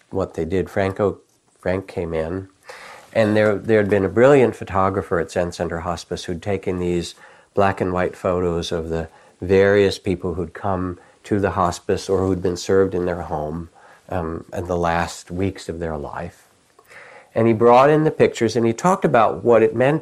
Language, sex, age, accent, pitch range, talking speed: English, male, 60-79, American, 90-115 Hz, 190 wpm